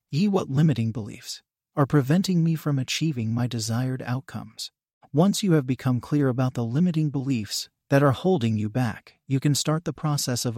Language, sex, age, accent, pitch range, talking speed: English, male, 40-59, American, 125-160 Hz, 180 wpm